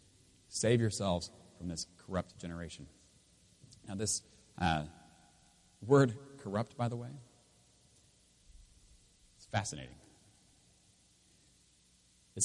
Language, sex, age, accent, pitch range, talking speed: English, male, 40-59, American, 90-115 Hz, 80 wpm